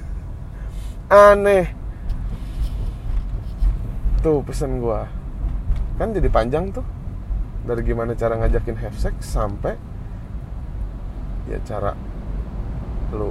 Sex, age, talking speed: male, 20-39, 80 wpm